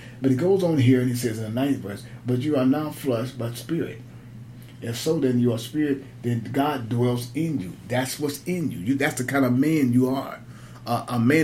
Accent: American